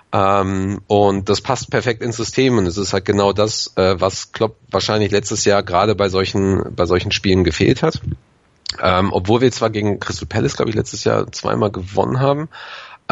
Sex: male